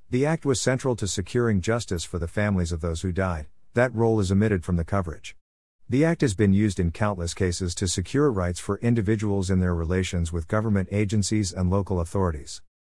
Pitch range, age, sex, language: 90-115 Hz, 50-69, male, English